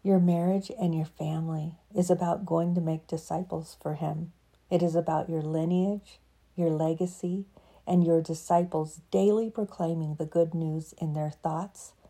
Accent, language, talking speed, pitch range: American, English, 155 wpm, 160-180 Hz